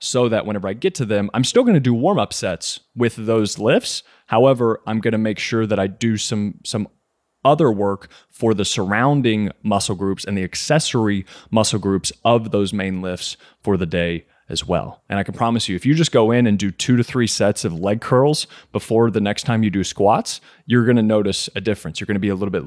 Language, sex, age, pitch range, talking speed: English, male, 20-39, 95-120 Hz, 235 wpm